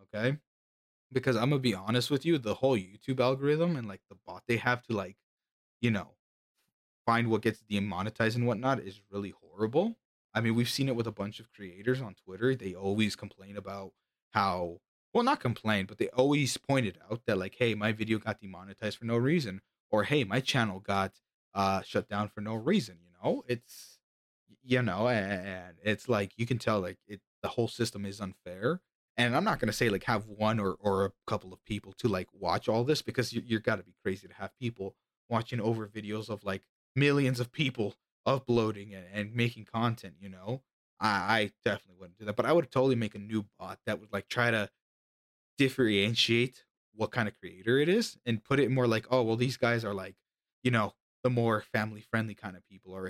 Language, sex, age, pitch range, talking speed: English, male, 20-39, 100-125 Hz, 210 wpm